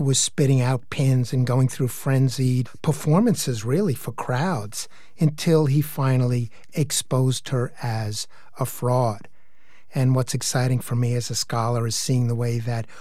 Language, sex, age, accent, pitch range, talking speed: English, male, 50-69, American, 120-145 Hz, 150 wpm